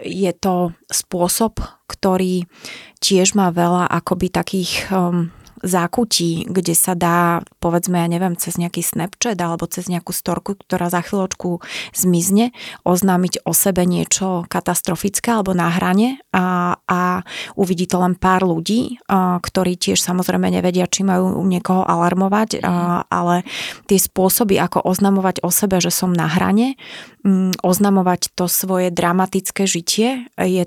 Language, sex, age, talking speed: Slovak, female, 30-49, 130 wpm